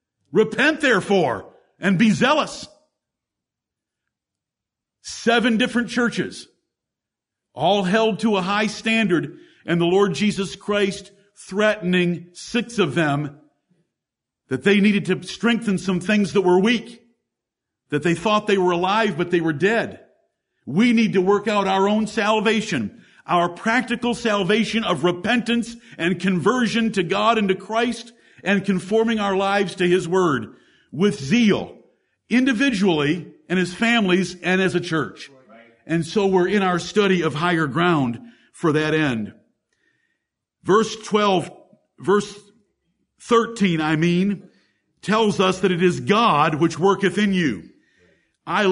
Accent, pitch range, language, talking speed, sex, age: American, 175-220 Hz, English, 135 wpm, male, 50-69